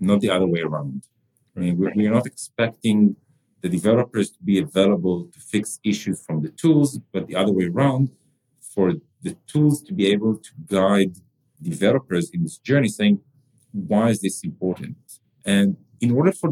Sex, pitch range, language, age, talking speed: male, 95-135 Hz, English, 40-59, 165 wpm